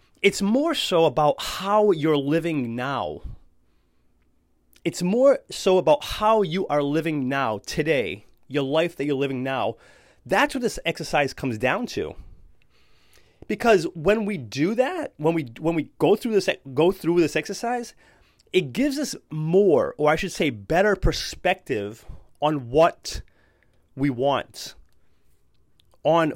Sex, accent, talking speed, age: male, American, 140 wpm, 30-49